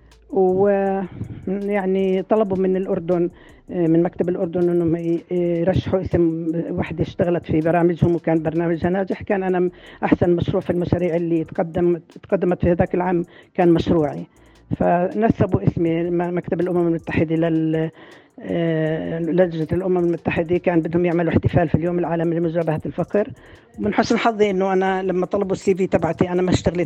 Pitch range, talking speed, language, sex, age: 165-190 Hz, 135 wpm, Arabic, female, 50-69